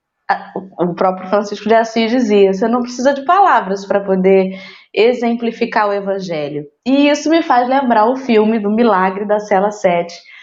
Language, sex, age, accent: Portuguese, female, 20-39, Brazilian